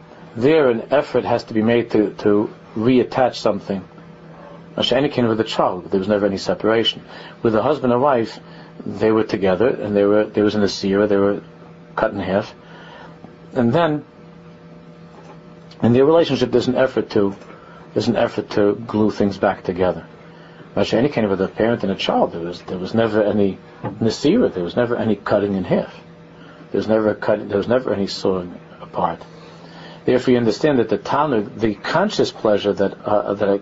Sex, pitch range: male, 100-115 Hz